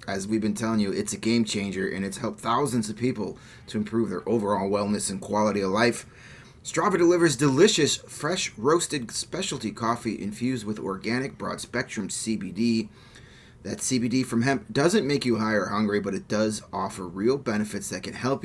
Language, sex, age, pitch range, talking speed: English, male, 30-49, 105-130 Hz, 175 wpm